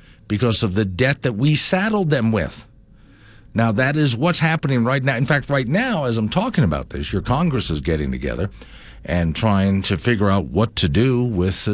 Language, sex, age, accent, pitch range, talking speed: English, male, 50-69, American, 95-130 Hz, 200 wpm